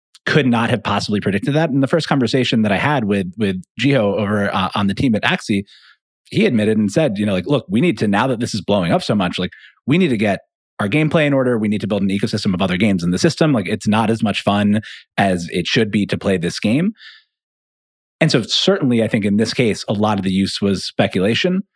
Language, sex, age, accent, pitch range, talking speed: English, male, 30-49, American, 100-130 Hz, 255 wpm